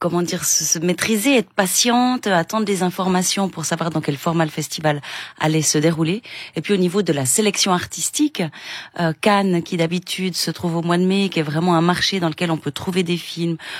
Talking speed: 215 wpm